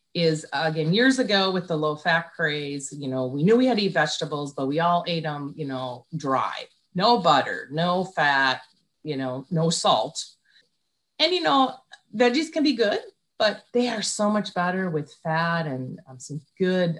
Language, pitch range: English, 155-215 Hz